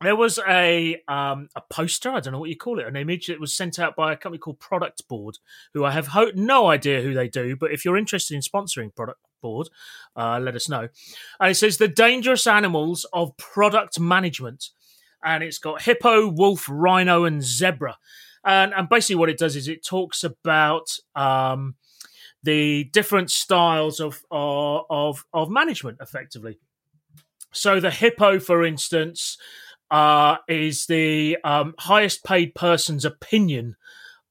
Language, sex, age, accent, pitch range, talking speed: English, male, 30-49, British, 140-180 Hz, 165 wpm